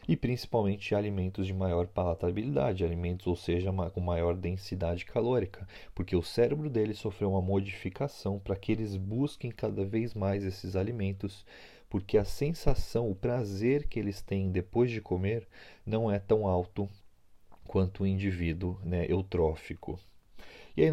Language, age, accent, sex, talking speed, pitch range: Portuguese, 30-49, Brazilian, male, 145 wpm, 90-110 Hz